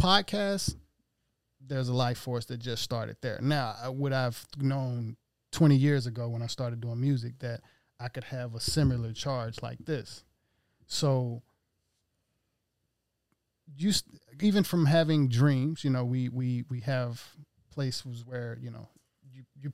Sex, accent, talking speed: male, American, 145 wpm